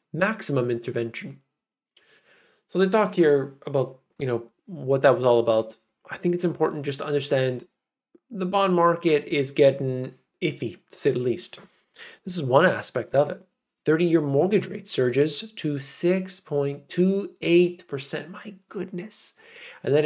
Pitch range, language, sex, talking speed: 130-185 Hz, English, male, 140 wpm